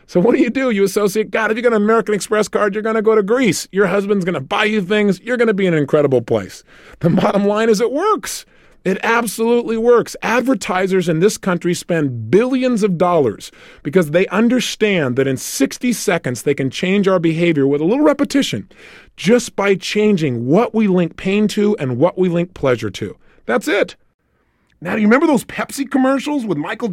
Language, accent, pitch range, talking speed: English, American, 170-225 Hz, 210 wpm